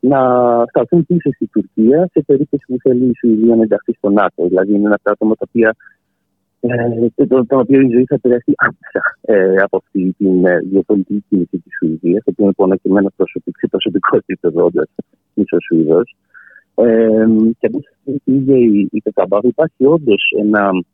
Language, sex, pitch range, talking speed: Greek, male, 100-150 Hz, 150 wpm